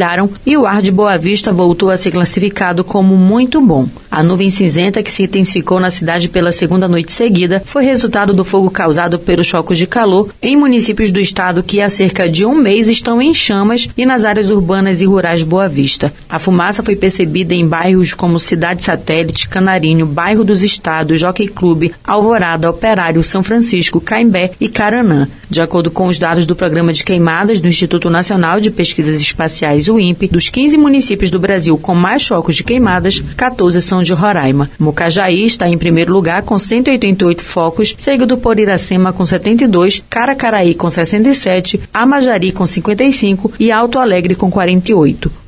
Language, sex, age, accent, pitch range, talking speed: Portuguese, female, 30-49, Brazilian, 170-210 Hz, 175 wpm